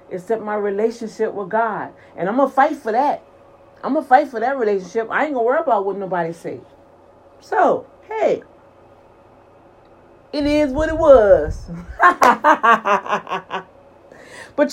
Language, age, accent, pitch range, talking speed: English, 40-59, American, 210-290 Hz, 145 wpm